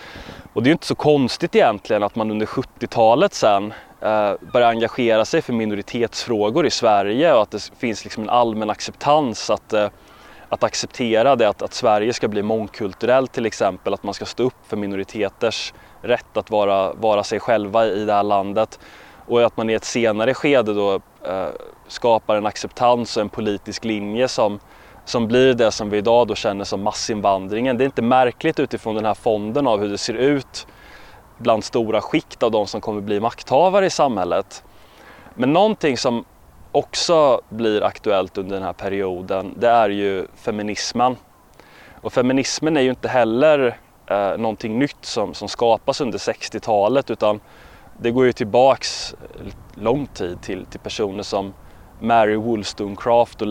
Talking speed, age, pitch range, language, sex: 170 wpm, 20-39, 100-120 Hz, Swedish, male